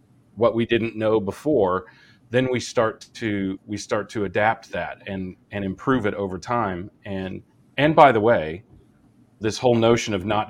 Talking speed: 170 wpm